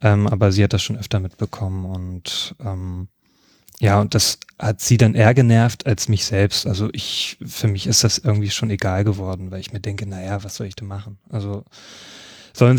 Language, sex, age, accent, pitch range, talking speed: German, male, 30-49, German, 105-120 Hz, 195 wpm